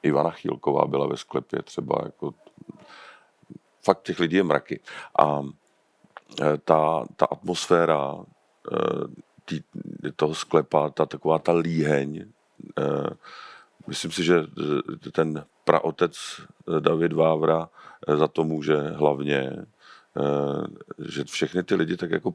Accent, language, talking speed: native, Czech, 105 wpm